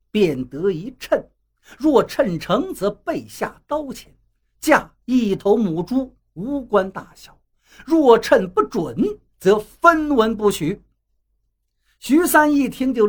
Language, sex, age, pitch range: Chinese, male, 50-69, 200-270 Hz